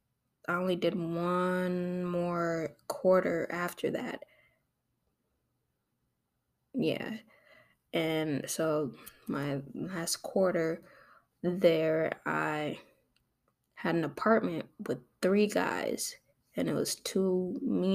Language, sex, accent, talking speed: English, female, American, 90 wpm